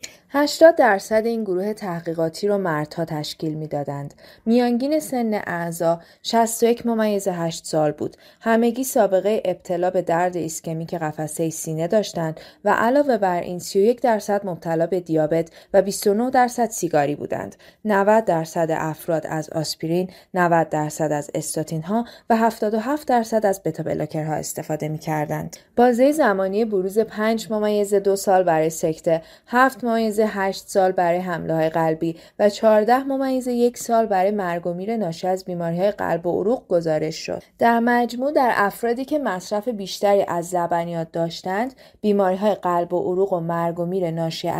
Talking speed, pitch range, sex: 150 wpm, 165-230 Hz, female